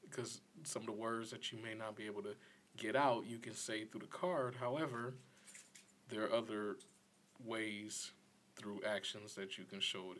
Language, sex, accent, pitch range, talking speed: English, male, American, 100-115 Hz, 190 wpm